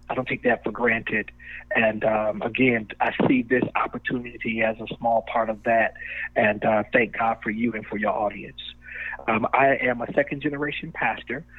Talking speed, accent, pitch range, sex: 180 wpm, American, 120-135 Hz, male